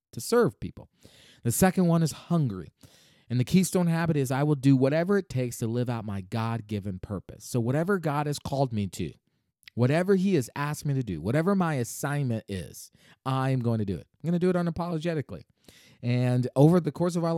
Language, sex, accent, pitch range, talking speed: English, male, American, 105-155 Hz, 205 wpm